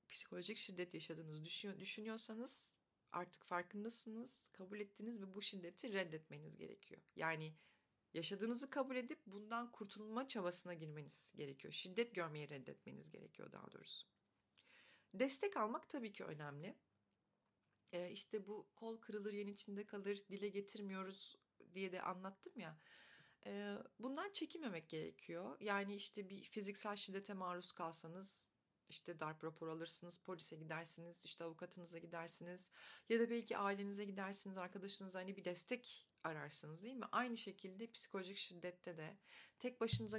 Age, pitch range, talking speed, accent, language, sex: 40-59, 165-205 Hz, 125 wpm, native, Turkish, female